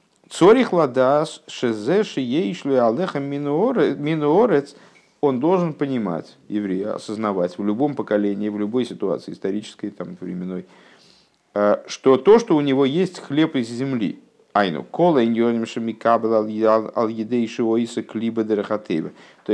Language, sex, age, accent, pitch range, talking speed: Russian, male, 50-69, native, 95-125 Hz, 105 wpm